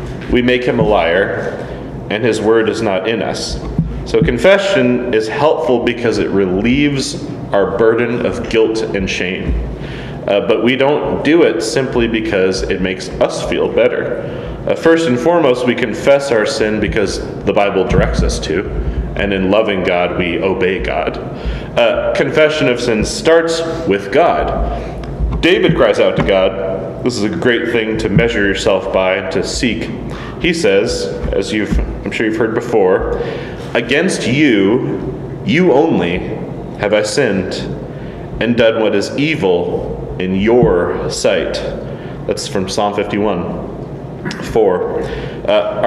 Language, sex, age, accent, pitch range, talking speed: English, male, 30-49, American, 105-165 Hz, 145 wpm